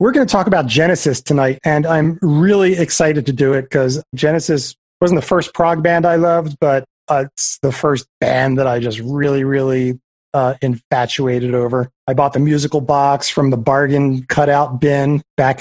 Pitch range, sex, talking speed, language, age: 135-160 Hz, male, 185 wpm, English, 30-49